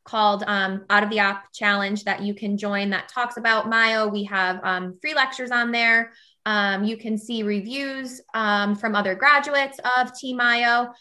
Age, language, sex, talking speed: 20-39, English, female, 185 wpm